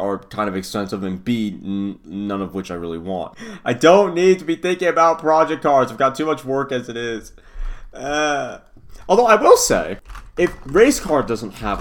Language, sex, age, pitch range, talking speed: English, male, 30-49, 100-150 Hz, 205 wpm